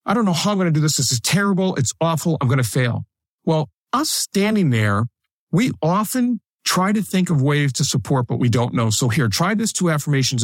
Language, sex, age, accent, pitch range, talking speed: English, male, 50-69, American, 125-165 Hz, 235 wpm